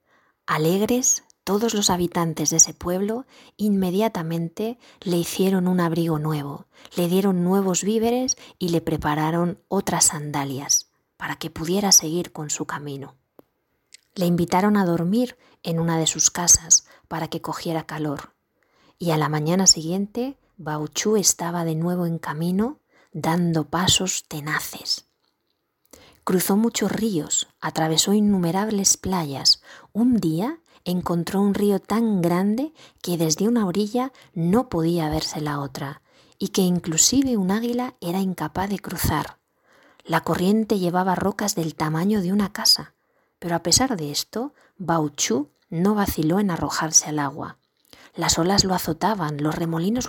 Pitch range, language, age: 160-205 Hz, Spanish, 20-39